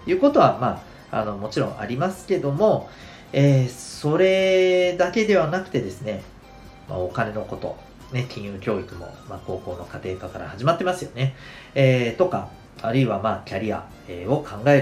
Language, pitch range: Japanese, 100-140 Hz